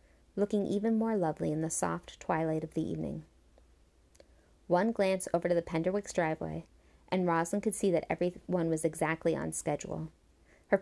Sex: female